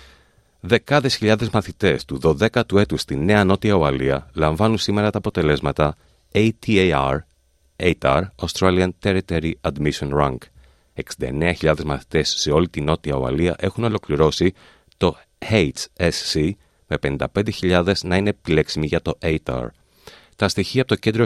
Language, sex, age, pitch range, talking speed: Greek, male, 30-49, 80-120 Hz, 125 wpm